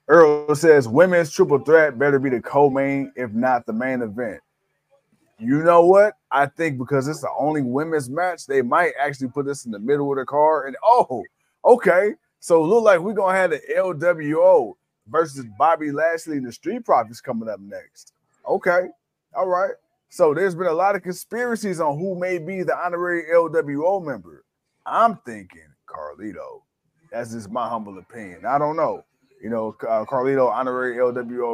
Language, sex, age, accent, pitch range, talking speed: English, male, 20-39, American, 130-180 Hz, 175 wpm